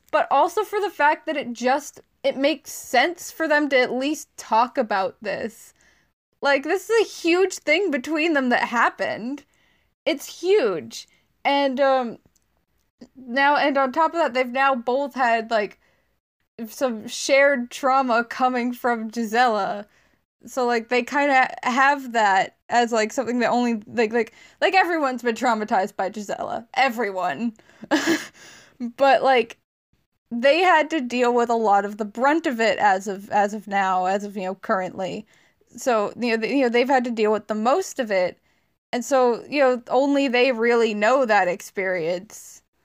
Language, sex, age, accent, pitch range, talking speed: English, female, 10-29, American, 225-275 Hz, 170 wpm